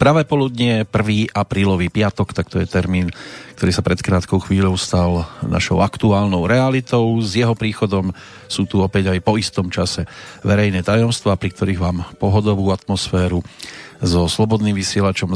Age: 40-59